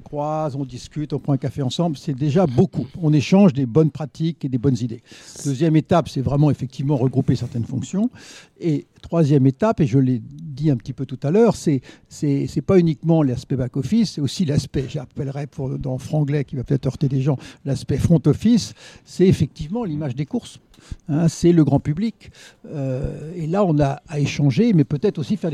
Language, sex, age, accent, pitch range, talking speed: French, male, 60-79, French, 135-170 Hz, 195 wpm